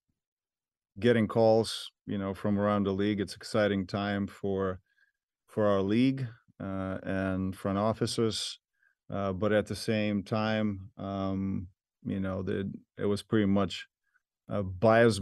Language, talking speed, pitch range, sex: English, 140 wpm, 95-110 Hz, male